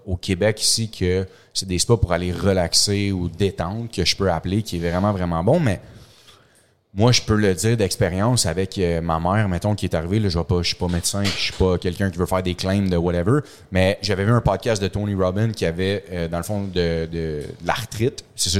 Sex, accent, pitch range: male, Canadian, 90-110 Hz